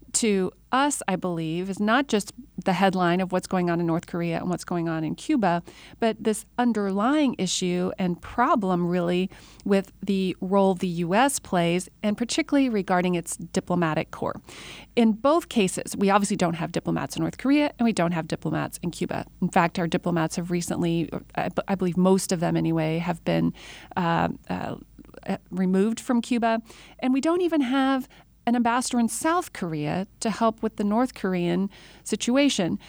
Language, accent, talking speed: English, American, 175 wpm